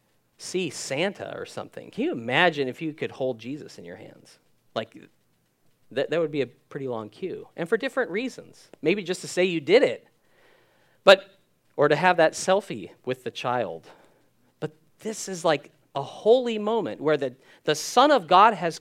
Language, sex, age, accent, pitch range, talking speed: English, male, 40-59, American, 140-195 Hz, 185 wpm